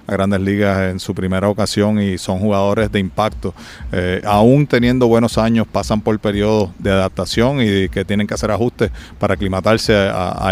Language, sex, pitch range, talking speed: English, male, 100-110 Hz, 185 wpm